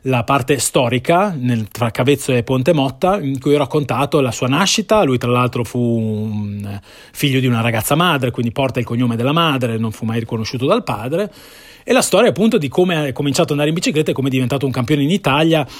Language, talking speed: Italian, 215 wpm